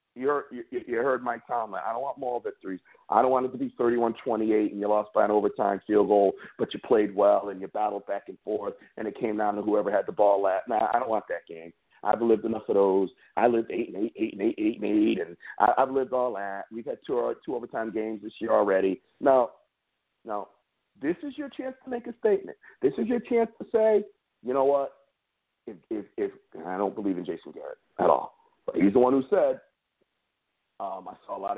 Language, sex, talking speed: English, male, 220 wpm